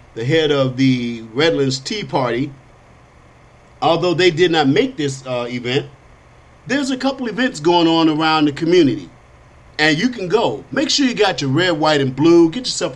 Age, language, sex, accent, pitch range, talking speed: 50-69, English, male, American, 135-190 Hz, 180 wpm